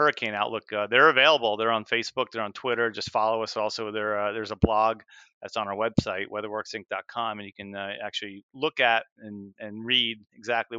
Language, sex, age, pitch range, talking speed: English, male, 30-49, 105-130 Hz, 200 wpm